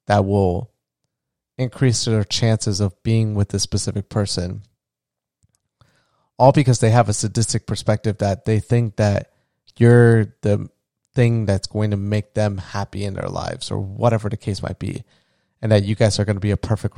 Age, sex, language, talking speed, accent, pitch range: 30-49, male, English, 175 wpm, American, 105-120 Hz